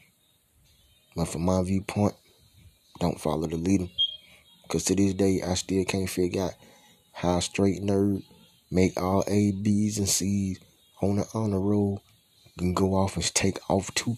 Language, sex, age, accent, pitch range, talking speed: English, male, 30-49, American, 85-95 Hz, 155 wpm